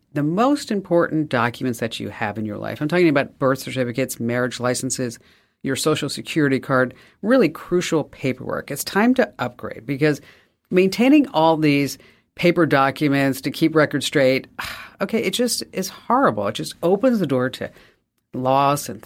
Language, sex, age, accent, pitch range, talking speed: English, female, 50-69, American, 125-155 Hz, 160 wpm